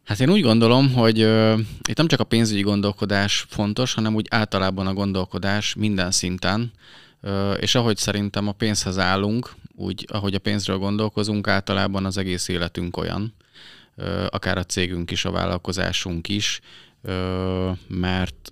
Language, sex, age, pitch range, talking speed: Hungarian, male, 20-39, 90-100 Hz, 150 wpm